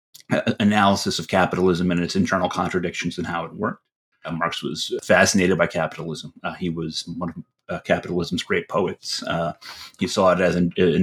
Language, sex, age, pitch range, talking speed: English, male, 30-49, 85-100 Hz, 180 wpm